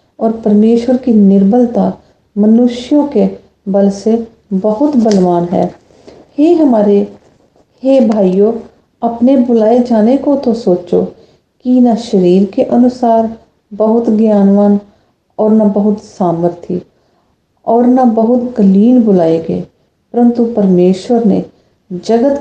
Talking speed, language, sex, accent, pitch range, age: 110 wpm, English, female, Indian, 195-235 Hz, 40-59